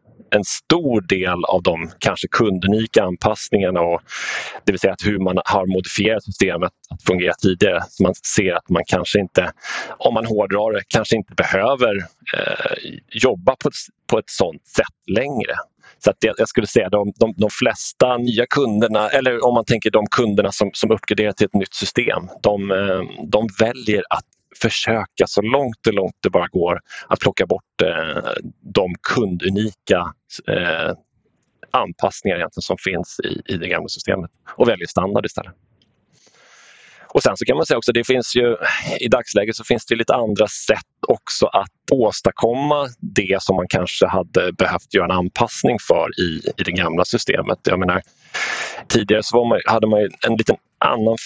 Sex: male